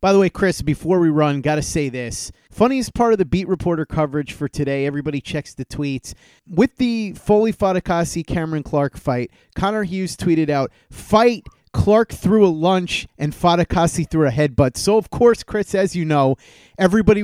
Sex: male